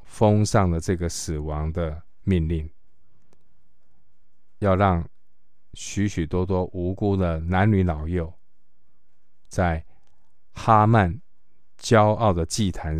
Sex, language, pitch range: male, Chinese, 85-100 Hz